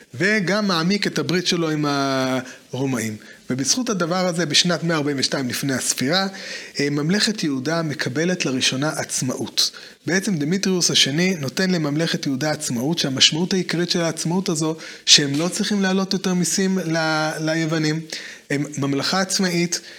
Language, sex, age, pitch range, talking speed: Hebrew, male, 30-49, 145-185 Hz, 125 wpm